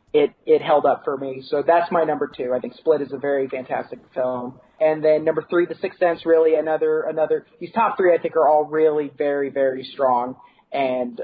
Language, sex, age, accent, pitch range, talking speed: English, male, 30-49, American, 150-185 Hz, 220 wpm